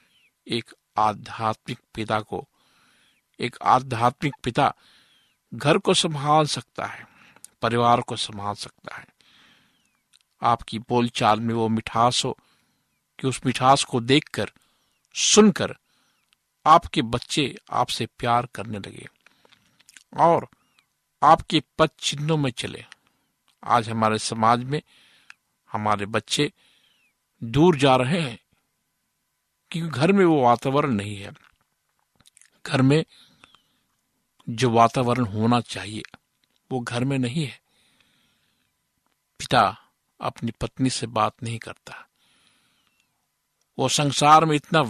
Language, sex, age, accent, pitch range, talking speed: Hindi, male, 50-69, native, 115-140 Hz, 100 wpm